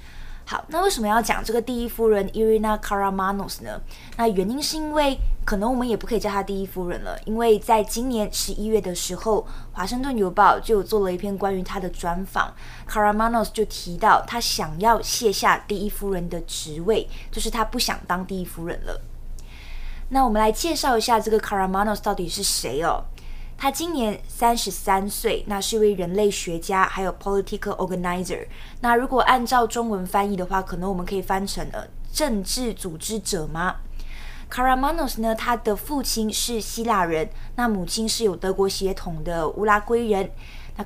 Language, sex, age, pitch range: Chinese, female, 20-39, 185-225 Hz